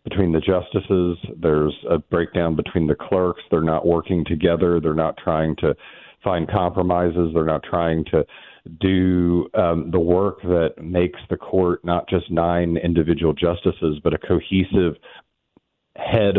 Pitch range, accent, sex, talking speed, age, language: 80-90 Hz, American, male, 145 wpm, 40-59, English